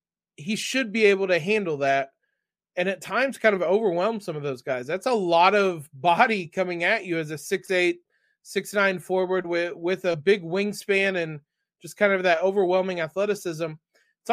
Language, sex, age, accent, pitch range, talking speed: English, male, 20-39, American, 165-200 Hz, 190 wpm